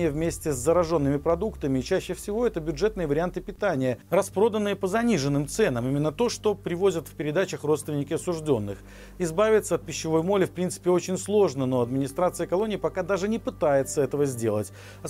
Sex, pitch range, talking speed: male, 145-195 Hz, 160 wpm